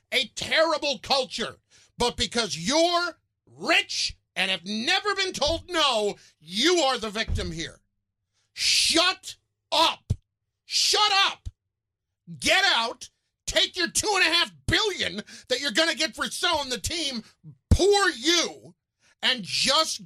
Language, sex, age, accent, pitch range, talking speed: English, male, 50-69, American, 200-320 Hz, 125 wpm